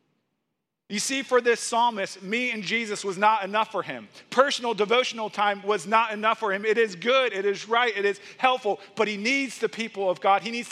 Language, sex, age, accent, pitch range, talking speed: English, male, 40-59, American, 200-245 Hz, 220 wpm